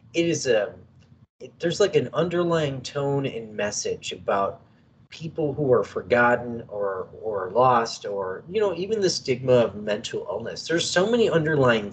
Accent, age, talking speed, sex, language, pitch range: American, 30-49, 155 wpm, male, English, 120-185 Hz